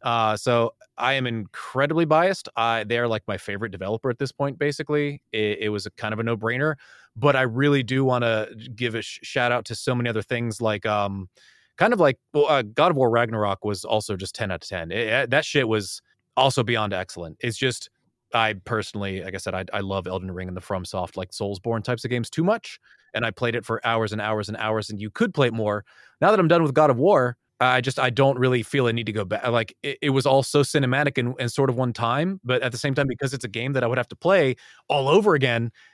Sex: male